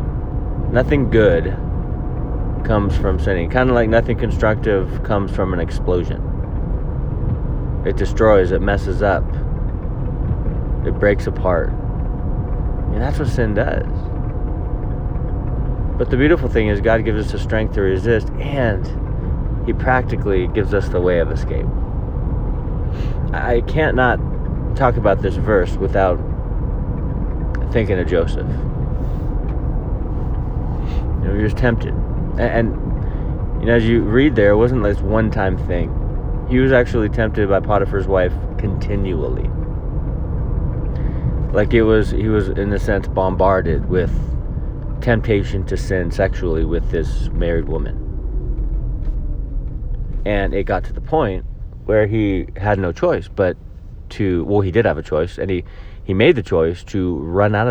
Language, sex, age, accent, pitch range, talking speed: English, male, 30-49, American, 85-110 Hz, 135 wpm